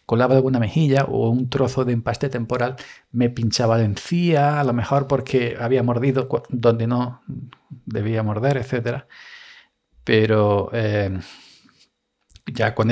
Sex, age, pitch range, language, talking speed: male, 40-59, 110-135 Hz, Spanish, 130 wpm